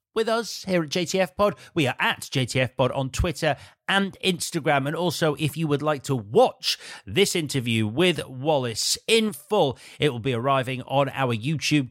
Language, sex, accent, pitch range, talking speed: English, male, British, 125-165 Hz, 180 wpm